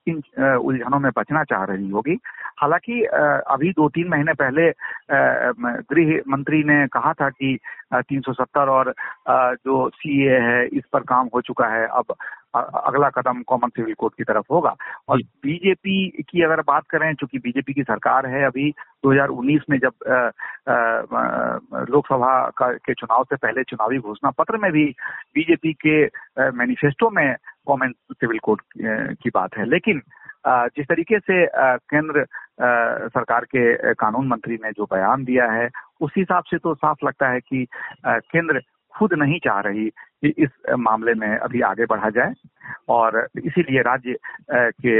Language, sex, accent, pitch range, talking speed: Hindi, male, native, 125-155 Hz, 150 wpm